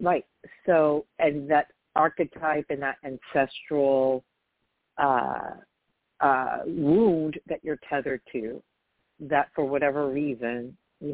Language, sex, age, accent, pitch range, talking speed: English, female, 50-69, American, 130-150 Hz, 110 wpm